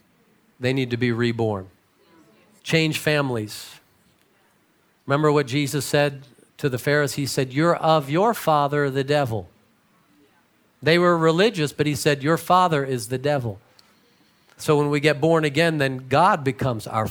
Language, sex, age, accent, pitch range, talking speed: English, male, 40-59, American, 135-170 Hz, 150 wpm